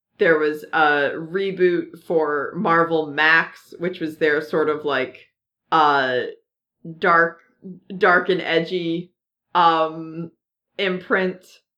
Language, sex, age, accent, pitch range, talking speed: English, female, 30-49, American, 155-200 Hz, 100 wpm